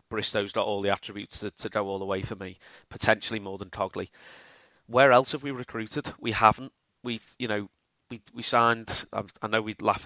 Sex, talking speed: male, 210 wpm